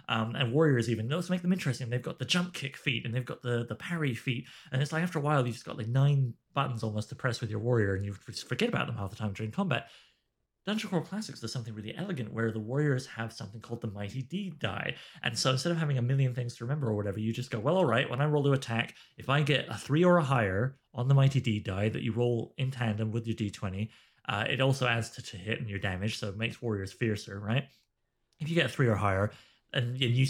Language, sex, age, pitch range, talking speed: English, male, 30-49, 115-150 Hz, 270 wpm